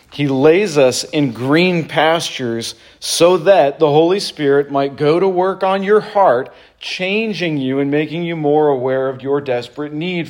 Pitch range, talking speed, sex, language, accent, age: 125-160 Hz, 170 wpm, male, English, American, 40-59